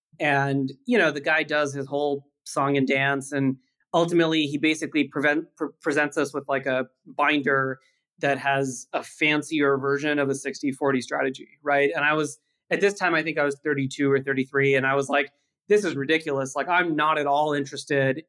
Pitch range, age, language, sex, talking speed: 140-175 Hz, 30-49, English, male, 195 wpm